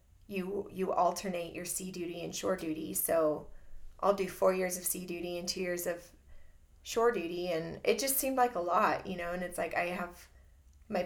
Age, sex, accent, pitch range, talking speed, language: 30-49, female, American, 170-195 Hz, 205 wpm, English